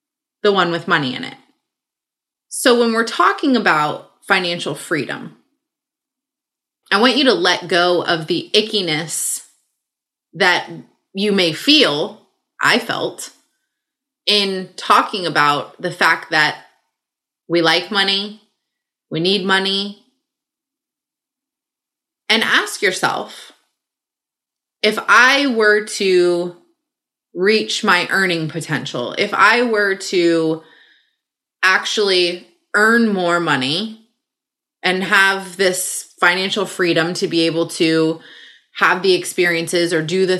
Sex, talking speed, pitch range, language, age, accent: female, 110 wpm, 175-275 Hz, English, 20-39, American